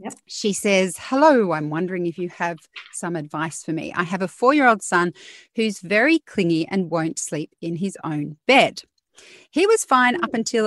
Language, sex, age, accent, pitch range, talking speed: English, female, 40-59, Australian, 170-225 Hz, 180 wpm